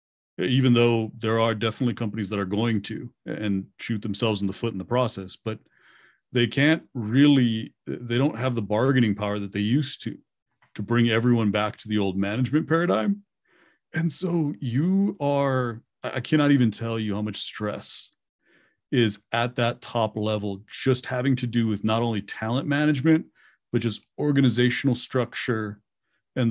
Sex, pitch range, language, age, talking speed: male, 105-125 Hz, English, 40-59, 165 wpm